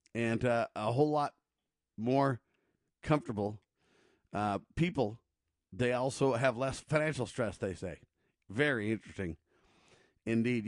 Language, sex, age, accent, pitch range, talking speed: English, male, 50-69, American, 120-155 Hz, 110 wpm